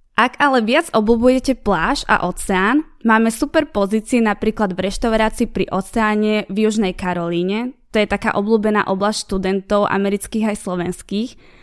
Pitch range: 195-235 Hz